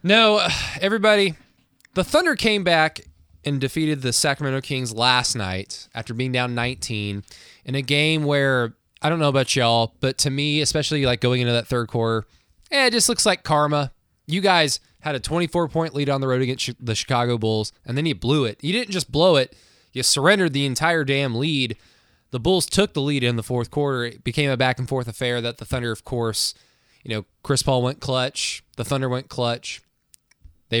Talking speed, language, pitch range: 205 wpm, English, 120-155 Hz